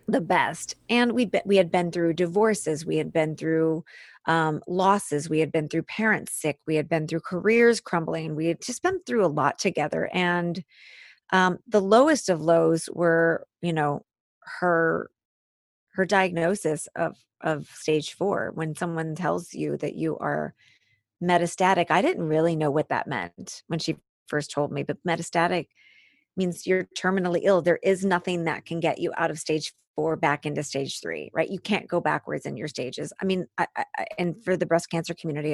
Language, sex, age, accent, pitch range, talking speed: English, female, 30-49, American, 160-195 Hz, 185 wpm